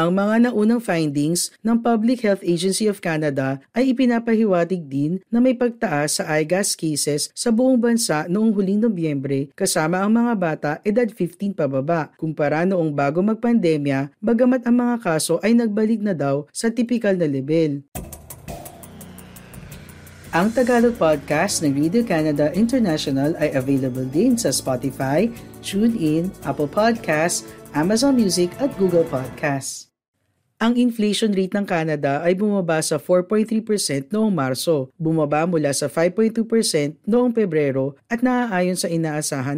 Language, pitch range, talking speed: Filipino, 150-220 Hz, 135 wpm